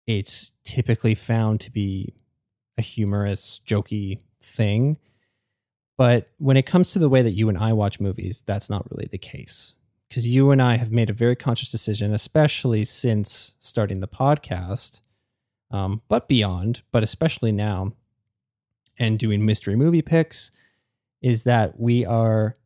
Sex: male